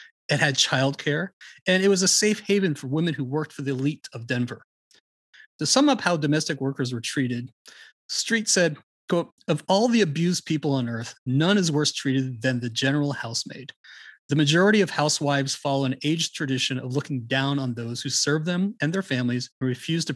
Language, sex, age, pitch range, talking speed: English, male, 30-49, 130-170 Hz, 195 wpm